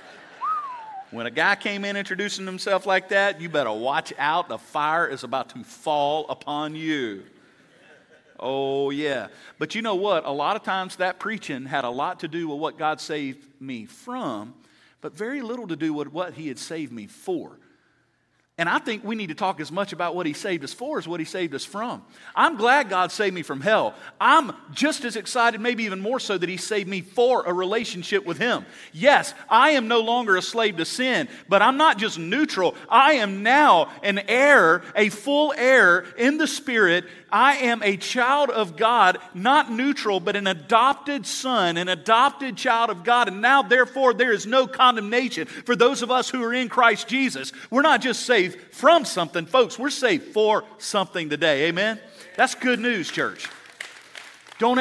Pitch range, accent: 175-250 Hz, American